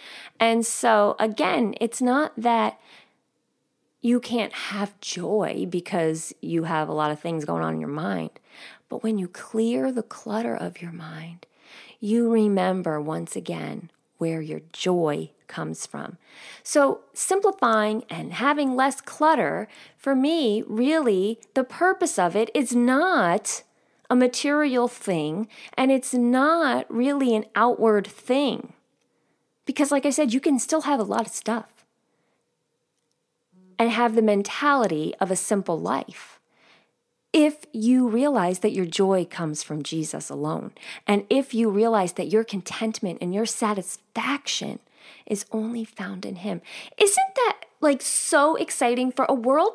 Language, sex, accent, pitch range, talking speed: English, female, American, 205-280 Hz, 140 wpm